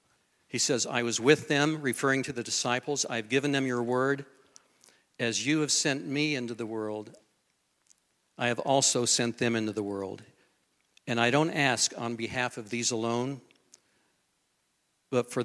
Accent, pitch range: American, 115-135 Hz